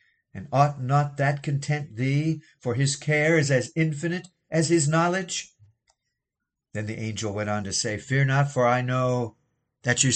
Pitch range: 125-160 Hz